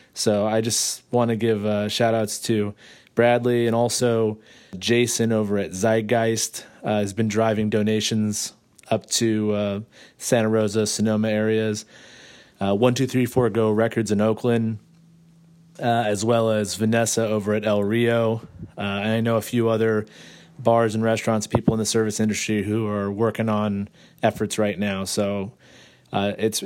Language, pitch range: English, 105-120 Hz